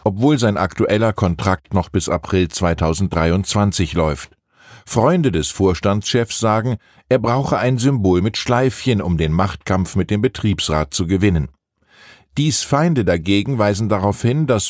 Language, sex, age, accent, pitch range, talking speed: German, male, 50-69, German, 95-120 Hz, 140 wpm